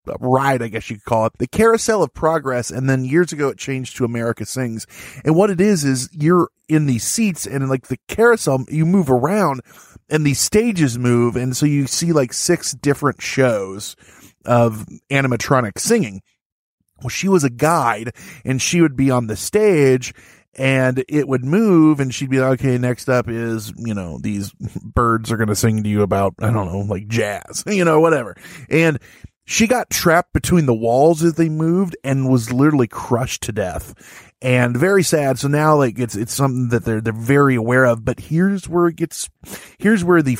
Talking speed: 200 wpm